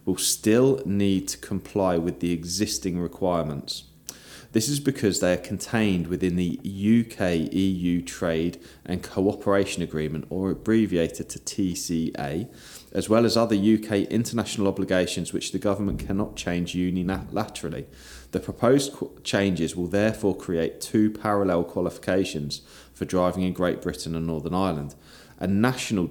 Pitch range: 85-105 Hz